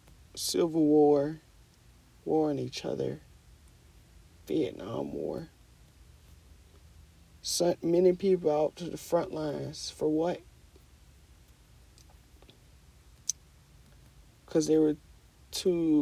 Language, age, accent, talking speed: English, 40-59, American, 80 wpm